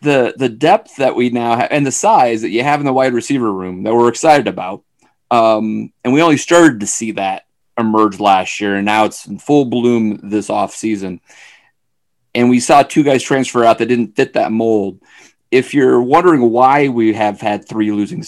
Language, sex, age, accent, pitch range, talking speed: English, male, 30-49, American, 105-125 Hz, 205 wpm